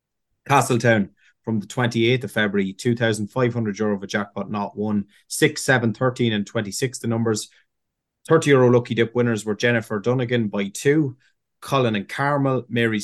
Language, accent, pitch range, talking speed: English, Irish, 105-125 Hz, 155 wpm